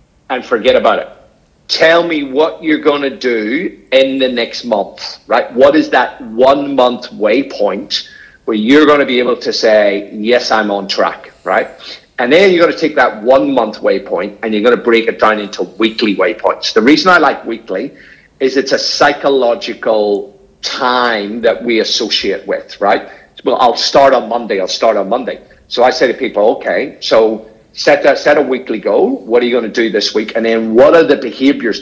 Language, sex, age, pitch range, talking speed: English, male, 50-69, 115-190 Hz, 190 wpm